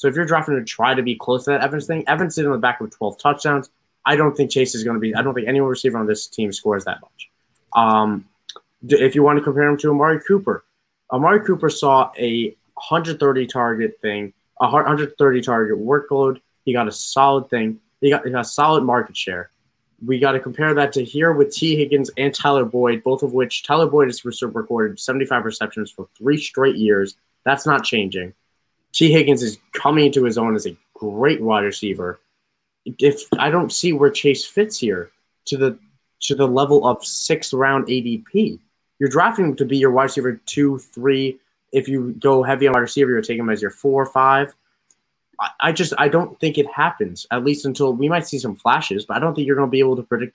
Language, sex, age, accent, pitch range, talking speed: English, male, 20-39, American, 115-145 Hz, 210 wpm